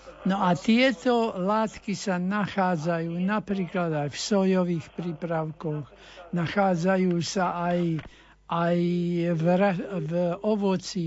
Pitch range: 160-190 Hz